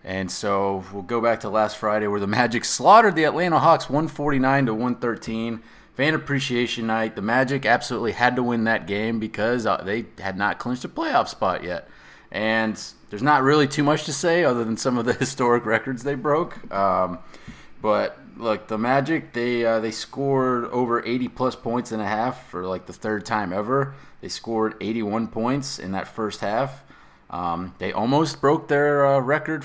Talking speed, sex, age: 180 wpm, male, 30-49